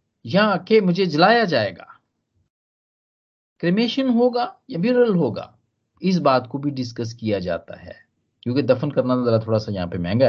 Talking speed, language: 150 wpm, Hindi